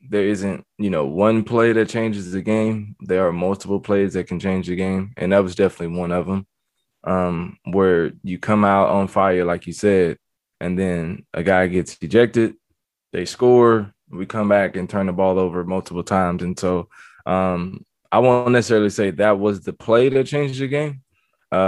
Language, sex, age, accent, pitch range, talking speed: English, male, 20-39, American, 90-105 Hz, 195 wpm